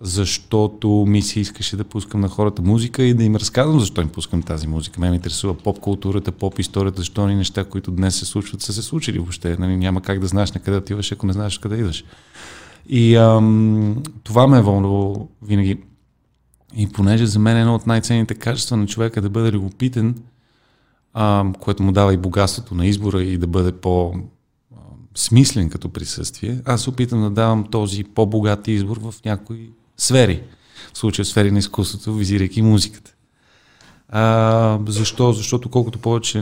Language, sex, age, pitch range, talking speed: Bulgarian, male, 30-49, 95-115 Hz, 175 wpm